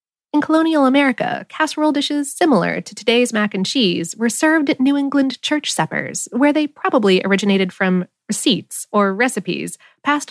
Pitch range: 180-280 Hz